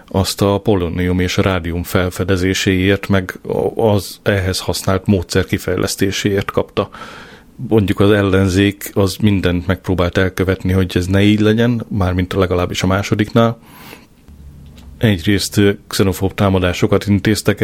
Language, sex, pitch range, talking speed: Hungarian, male, 95-105 Hz, 115 wpm